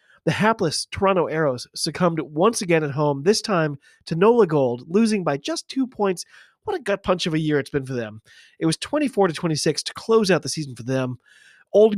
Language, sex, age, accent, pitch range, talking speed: English, male, 30-49, American, 150-225 Hz, 210 wpm